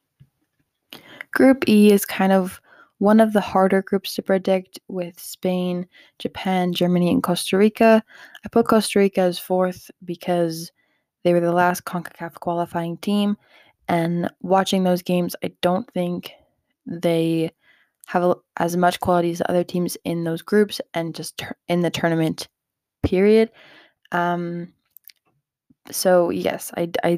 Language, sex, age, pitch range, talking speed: English, female, 20-39, 170-195 Hz, 135 wpm